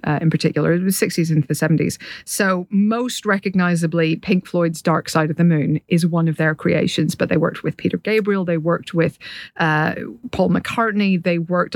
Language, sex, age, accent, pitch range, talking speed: English, female, 40-59, British, 170-210 Hz, 200 wpm